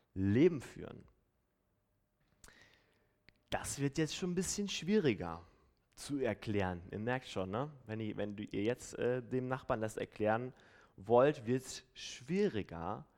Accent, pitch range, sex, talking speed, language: German, 105-130 Hz, male, 135 wpm, German